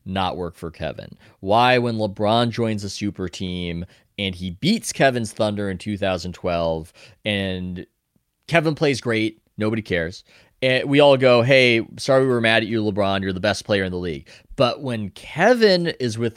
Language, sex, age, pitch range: English, male, 20-39, 95-120 Hz